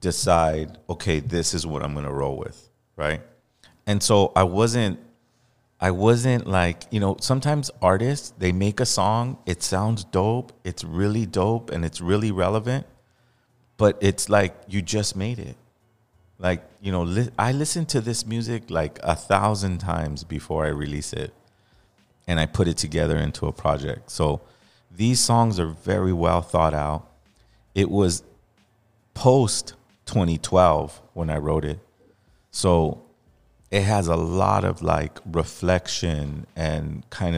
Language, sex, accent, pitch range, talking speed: English, male, American, 85-120 Hz, 150 wpm